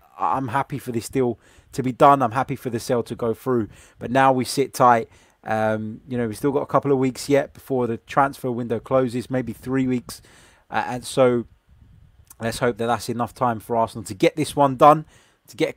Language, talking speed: English, 225 wpm